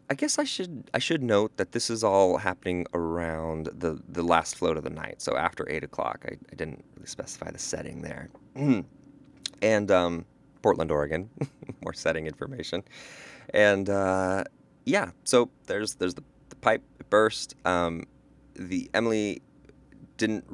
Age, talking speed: 30-49, 160 wpm